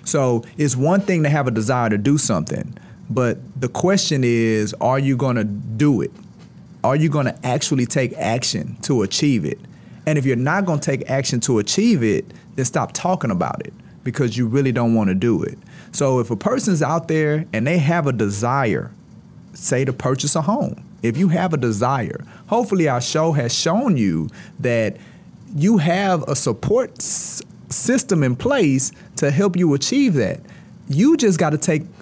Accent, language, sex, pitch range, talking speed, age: American, English, male, 130-190 Hz, 180 wpm, 30-49